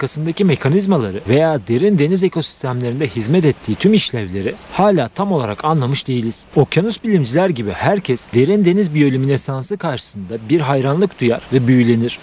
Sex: male